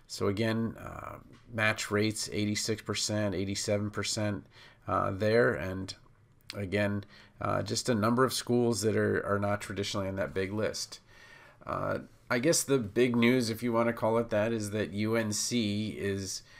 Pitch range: 100-120 Hz